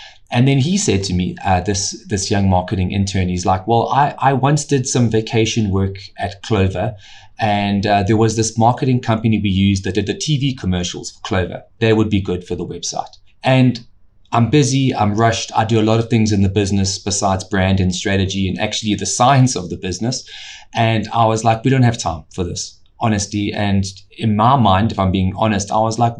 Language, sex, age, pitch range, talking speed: English, male, 20-39, 95-120 Hz, 215 wpm